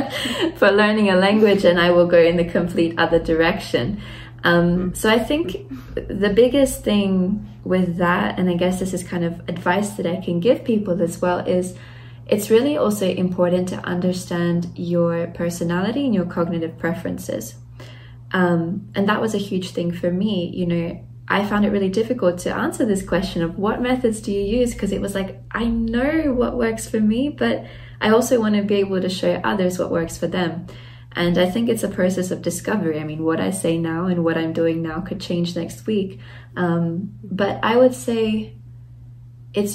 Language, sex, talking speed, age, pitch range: English, female, 195 wpm, 20-39, 165-205 Hz